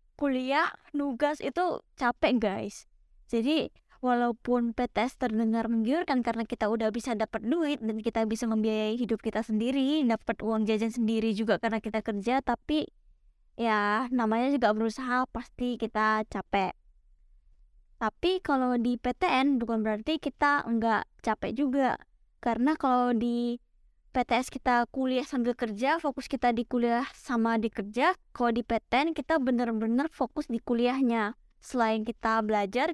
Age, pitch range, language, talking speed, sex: 20-39, 225-270 Hz, Indonesian, 135 wpm, female